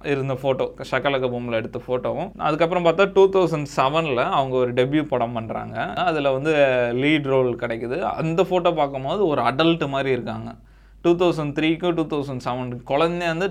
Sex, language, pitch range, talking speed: male, Tamil, 120-145 Hz, 160 wpm